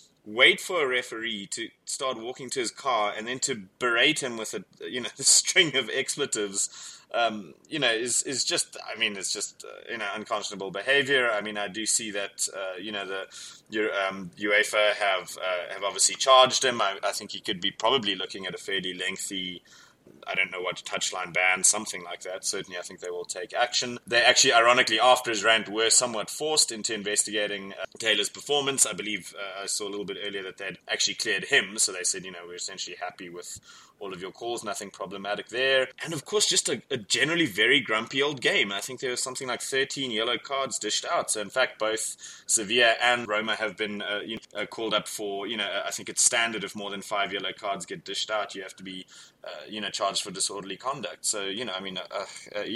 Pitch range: 100-125 Hz